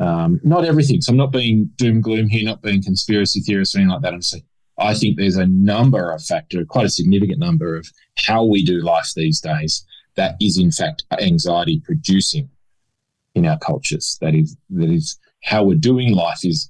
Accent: Australian